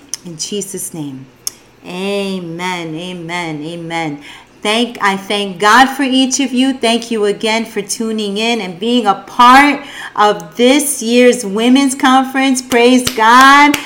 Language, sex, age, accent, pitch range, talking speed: English, female, 40-59, American, 195-255 Hz, 135 wpm